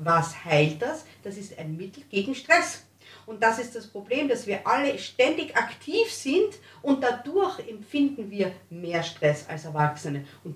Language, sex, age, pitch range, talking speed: German, female, 50-69, 195-275 Hz, 165 wpm